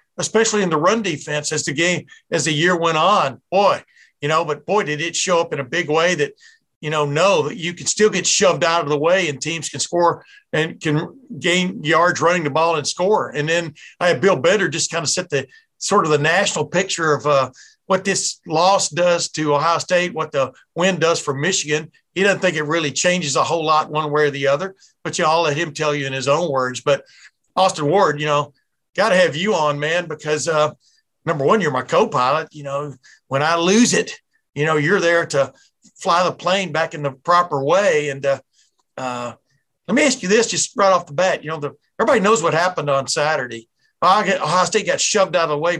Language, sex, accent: English, male, American